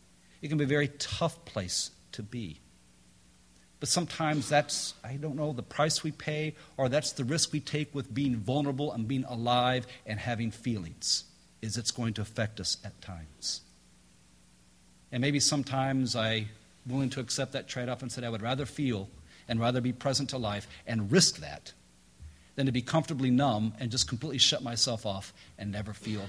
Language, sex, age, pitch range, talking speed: English, male, 50-69, 90-145 Hz, 185 wpm